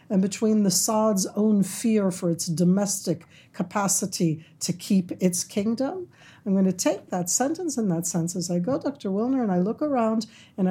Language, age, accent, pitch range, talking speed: English, 60-79, American, 175-215 Hz, 185 wpm